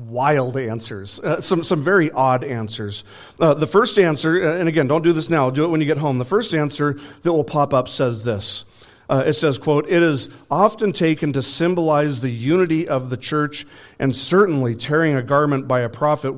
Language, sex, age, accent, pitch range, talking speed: English, male, 40-59, American, 125-155 Hz, 205 wpm